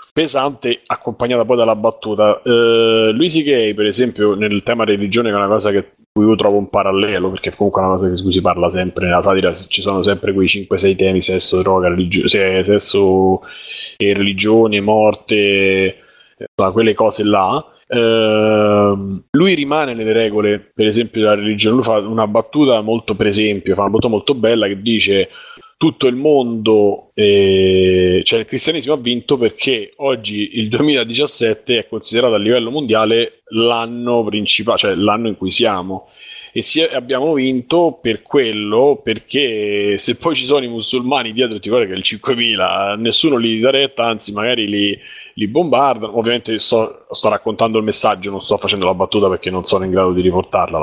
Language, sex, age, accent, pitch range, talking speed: Italian, male, 30-49, native, 100-125 Hz, 170 wpm